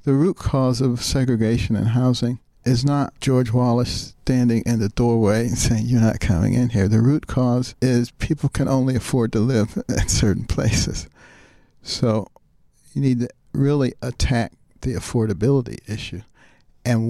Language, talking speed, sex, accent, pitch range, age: English, 160 wpm, male, American, 110-125 Hz, 60-79